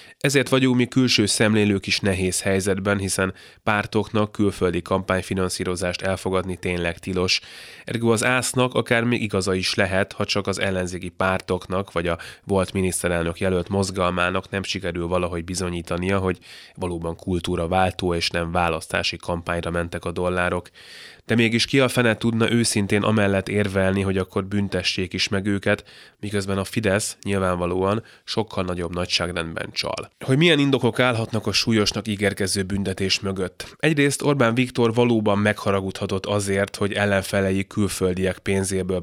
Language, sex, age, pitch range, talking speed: Hungarian, male, 20-39, 90-105 Hz, 140 wpm